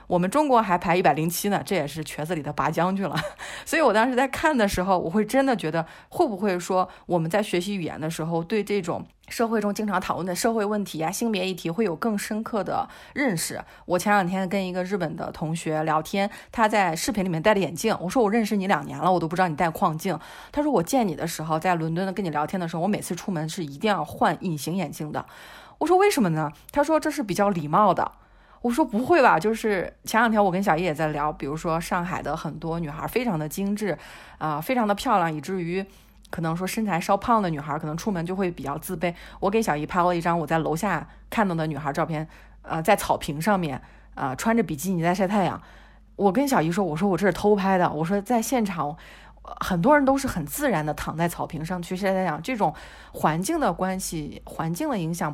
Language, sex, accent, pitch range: Chinese, female, native, 160-210 Hz